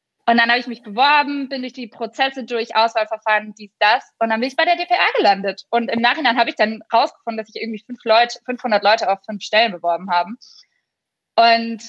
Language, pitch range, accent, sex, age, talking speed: German, 210-250 Hz, German, female, 20-39, 210 wpm